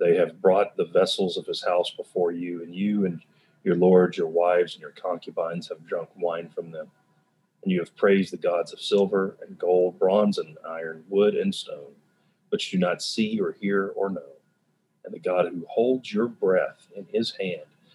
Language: English